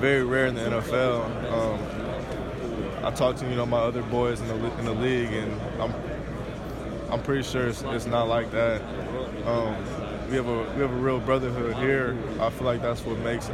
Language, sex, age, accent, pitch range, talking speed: English, male, 20-39, American, 115-125 Hz, 200 wpm